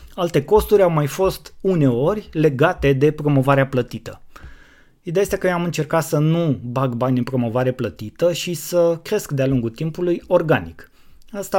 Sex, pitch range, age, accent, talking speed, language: male, 125-165 Hz, 20-39, native, 160 wpm, Romanian